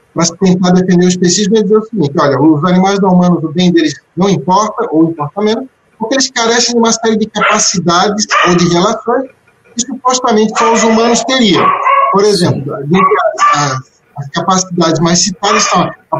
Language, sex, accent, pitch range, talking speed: Portuguese, male, Brazilian, 175-225 Hz, 180 wpm